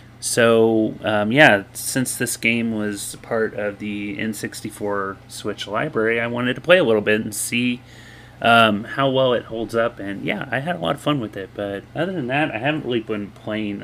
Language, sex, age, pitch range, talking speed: English, male, 30-49, 100-115 Hz, 205 wpm